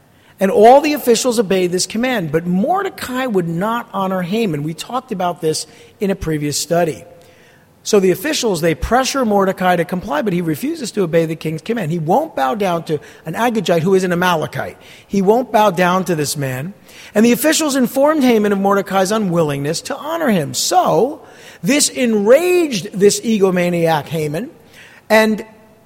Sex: male